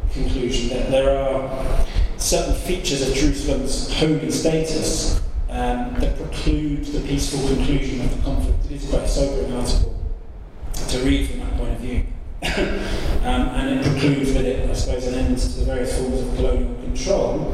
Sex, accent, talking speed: male, British, 165 wpm